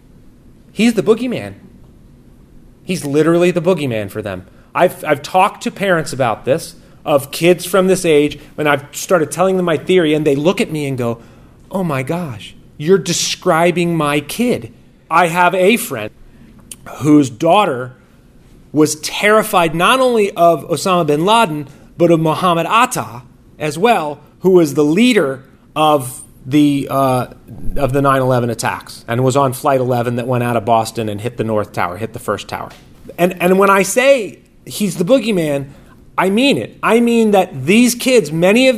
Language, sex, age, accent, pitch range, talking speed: English, male, 30-49, American, 130-190 Hz, 170 wpm